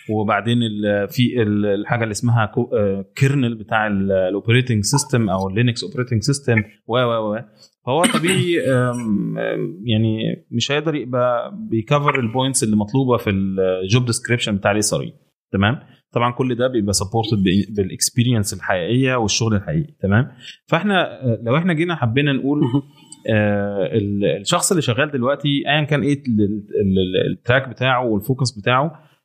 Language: Arabic